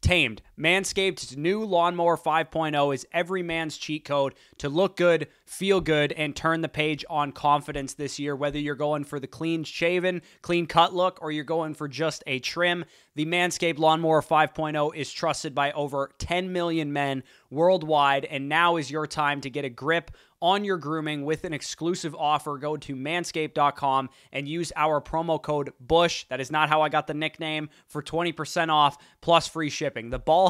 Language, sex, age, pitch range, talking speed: English, male, 20-39, 145-170 Hz, 185 wpm